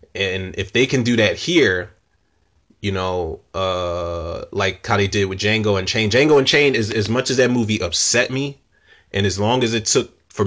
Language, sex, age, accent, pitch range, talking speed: English, male, 20-39, American, 100-125 Hz, 210 wpm